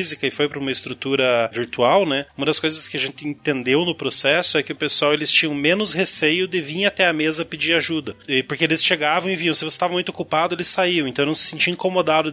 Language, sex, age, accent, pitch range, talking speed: Portuguese, male, 20-39, Brazilian, 150-180 Hz, 240 wpm